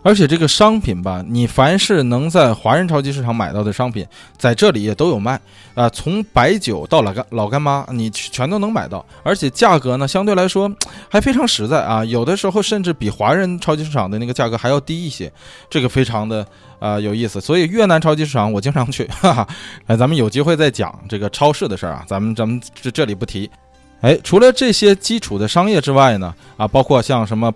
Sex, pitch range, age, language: male, 105-155 Hz, 20-39, Chinese